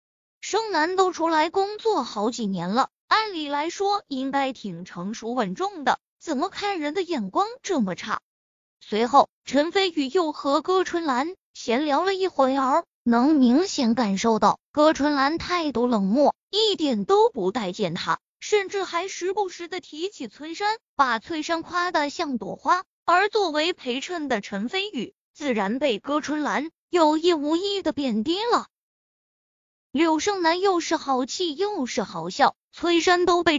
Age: 20-39